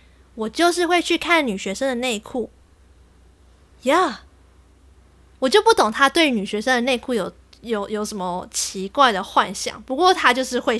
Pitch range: 220-320 Hz